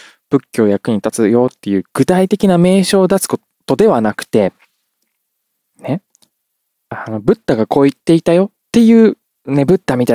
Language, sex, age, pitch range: Japanese, male, 20-39, 115-145 Hz